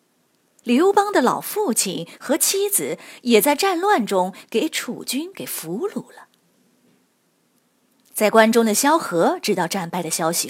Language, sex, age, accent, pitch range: Chinese, female, 20-39, native, 200-305 Hz